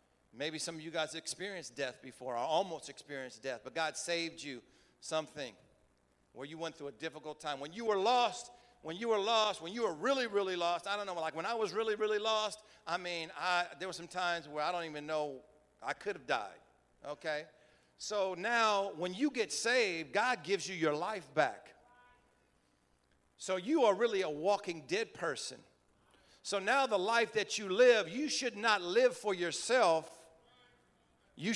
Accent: American